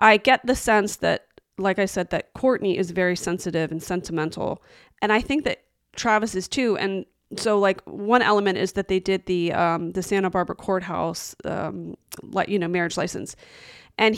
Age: 30-49